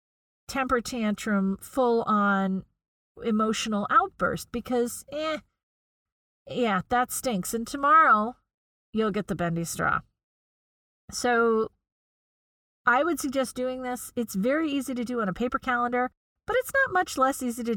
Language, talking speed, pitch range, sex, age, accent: English, 130 wpm, 190-255 Hz, female, 40-59, American